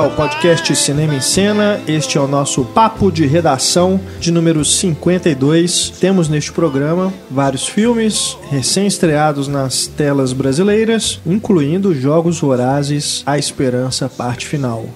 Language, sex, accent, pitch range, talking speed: Portuguese, male, Brazilian, 140-185 Hz, 120 wpm